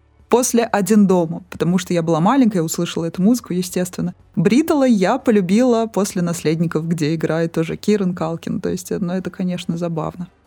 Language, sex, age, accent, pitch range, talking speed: Russian, female, 20-39, native, 165-230 Hz, 160 wpm